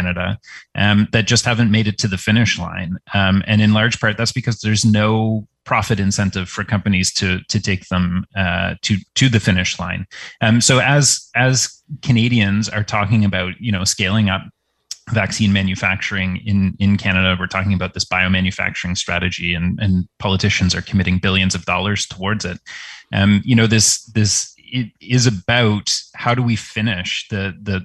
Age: 30-49